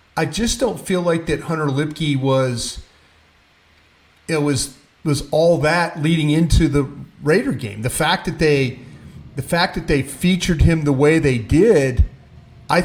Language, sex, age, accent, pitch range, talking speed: English, male, 40-59, American, 135-165 Hz, 160 wpm